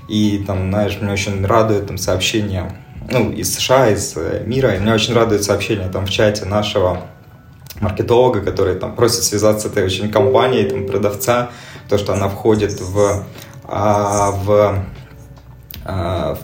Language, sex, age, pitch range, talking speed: Russian, male, 20-39, 100-120 Hz, 145 wpm